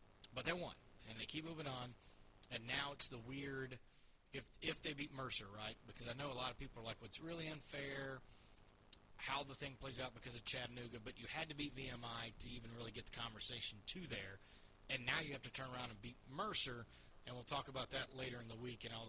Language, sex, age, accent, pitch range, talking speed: English, male, 30-49, American, 110-140 Hz, 235 wpm